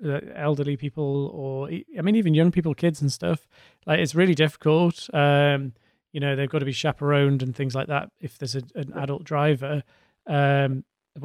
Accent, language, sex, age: British, English, male, 30-49